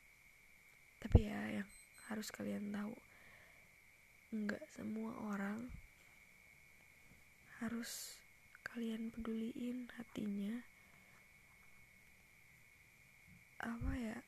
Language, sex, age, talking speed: Indonesian, female, 20-39, 60 wpm